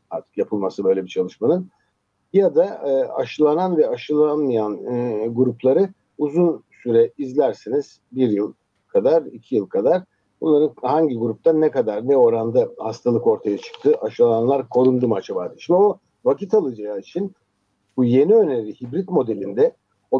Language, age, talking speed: Turkish, 60-79, 140 wpm